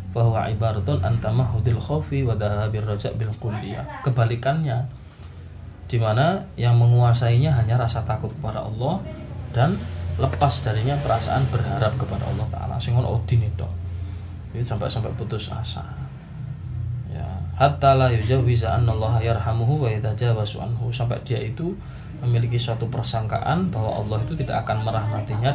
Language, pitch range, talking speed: Malay, 110-130 Hz, 125 wpm